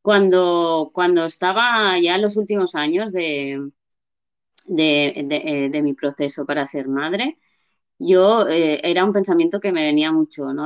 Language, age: Spanish, 20-39